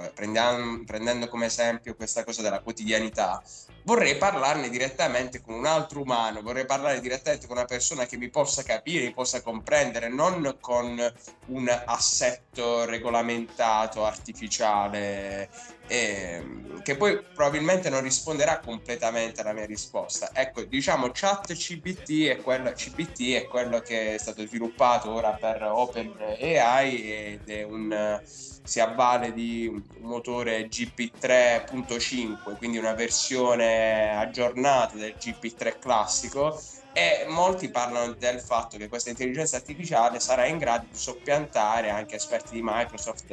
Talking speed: 125 wpm